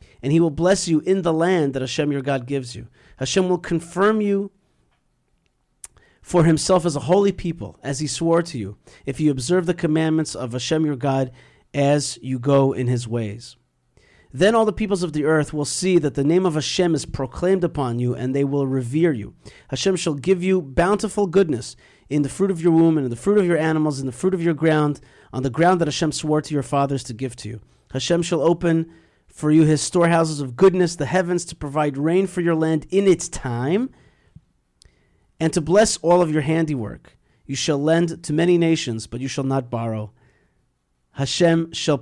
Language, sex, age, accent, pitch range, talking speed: English, male, 40-59, American, 135-175 Hz, 205 wpm